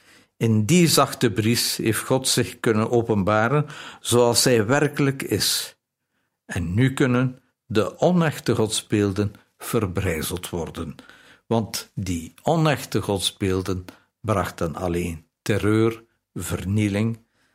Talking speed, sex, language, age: 100 wpm, male, Dutch, 60-79